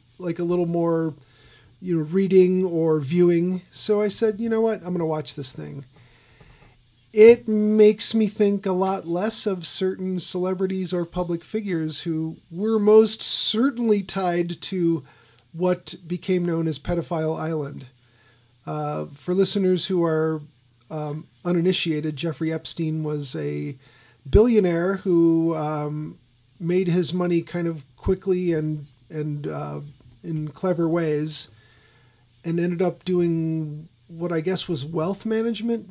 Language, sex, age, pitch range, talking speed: English, male, 40-59, 145-185 Hz, 135 wpm